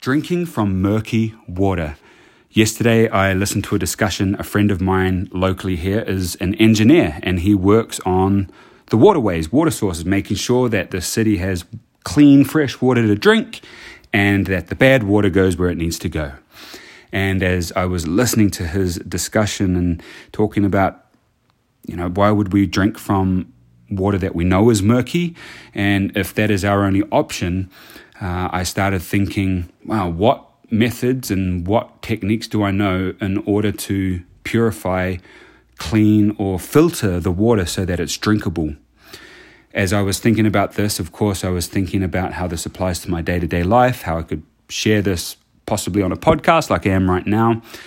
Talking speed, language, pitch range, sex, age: 175 wpm, English, 90-110 Hz, male, 30-49